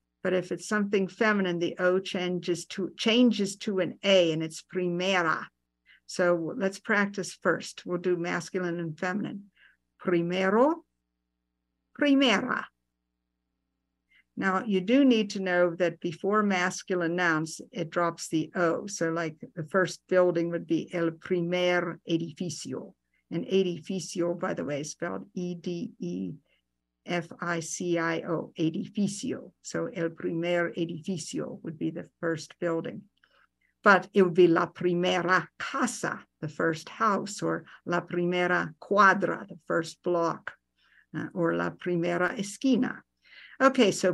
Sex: female